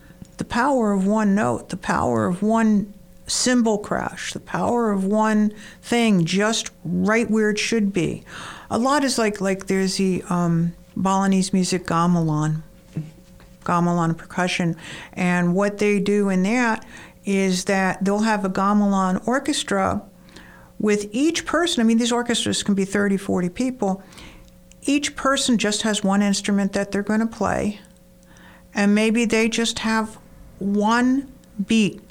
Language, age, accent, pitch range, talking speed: English, 60-79, American, 180-220 Hz, 145 wpm